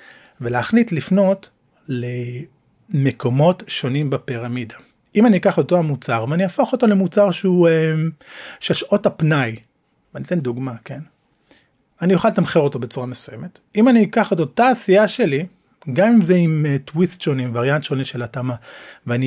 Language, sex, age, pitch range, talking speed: Hebrew, male, 40-59, 125-185 Hz, 145 wpm